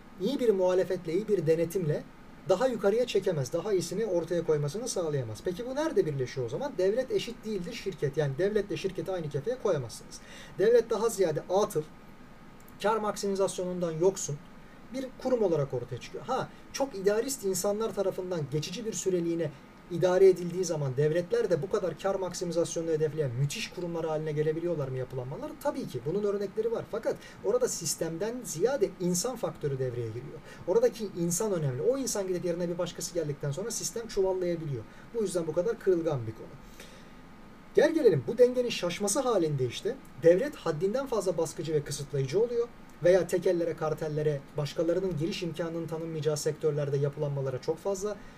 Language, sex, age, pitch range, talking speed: Turkish, male, 40-59, 155-210 Hz, 155 wpm